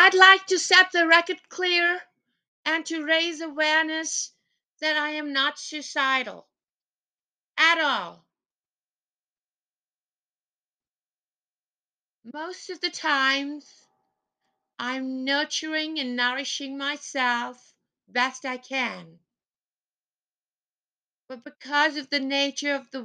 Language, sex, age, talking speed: English, female, 50-69, 95 wpm